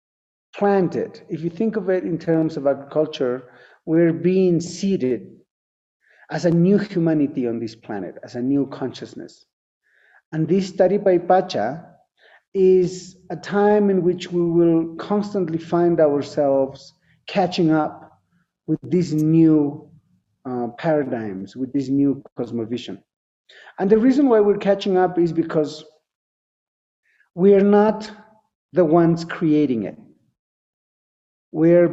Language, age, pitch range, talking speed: English, 50-69, 140-180 Hz, 125 wpm